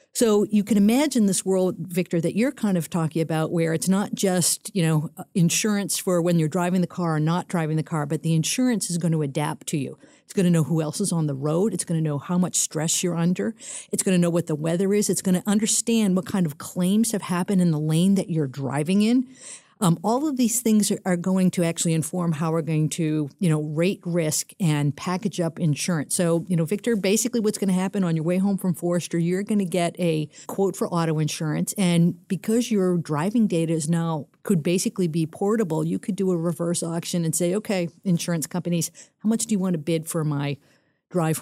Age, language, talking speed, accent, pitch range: 50-69, English, 235 wpm, American, 160-195 Hz